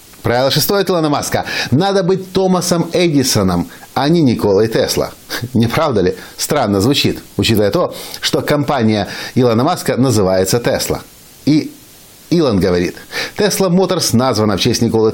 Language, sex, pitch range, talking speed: Russian, male, 105-140 Hz, 135 wpm